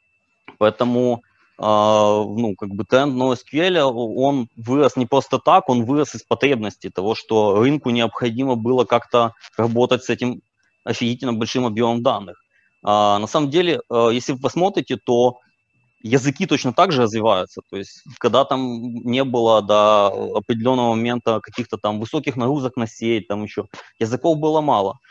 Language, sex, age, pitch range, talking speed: Ukrainian, male, 20-39, 110-125 Hz, 145 wpm